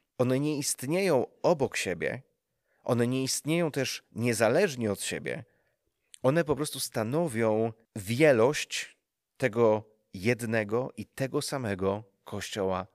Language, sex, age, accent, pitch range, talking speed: Polish, male, 30-49, native, 110-145 Hz, 105 wpm